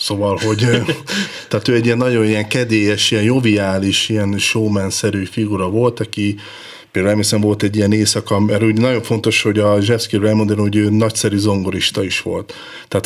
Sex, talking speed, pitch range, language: male, 165 wpm, 100-110 Hz, Hungarian